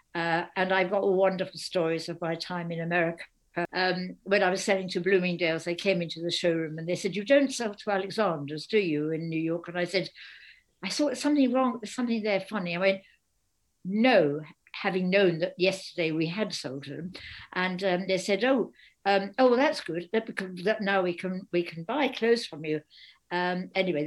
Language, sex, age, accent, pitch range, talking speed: English, female, 60-79, British, 170-215 Hz, 205 wpm